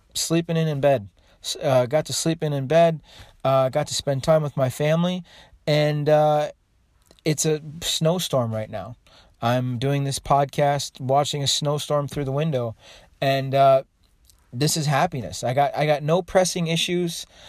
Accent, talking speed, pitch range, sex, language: American, 165 wpm, 130-165 Hz, male, English